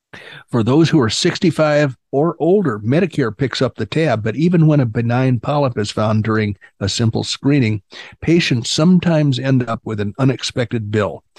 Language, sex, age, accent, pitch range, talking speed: English, male, 50-69, American, 115-145 Hz, 170 wpm